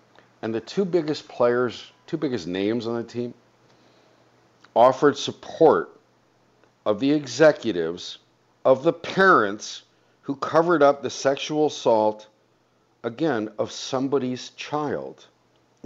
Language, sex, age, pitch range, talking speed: English, male, 50-69, 105-150 Hz, 115 wpm